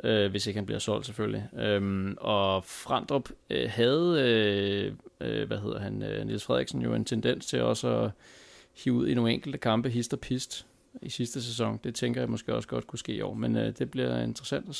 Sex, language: male, Danish